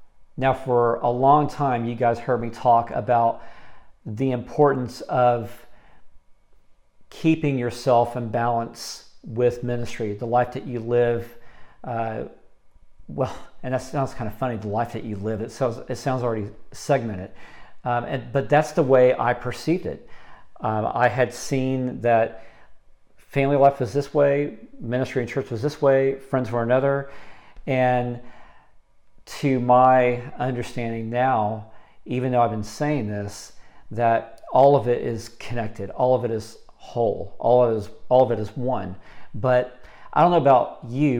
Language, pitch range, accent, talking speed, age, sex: English, 115-130 Hz, American, 155 wpm, 50-69, male